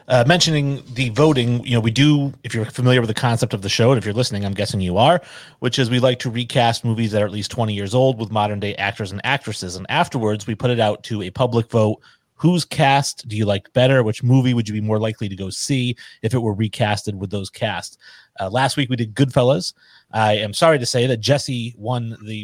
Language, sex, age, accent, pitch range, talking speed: English, male, 30-49, American, 110-135 Hz, 250 wpm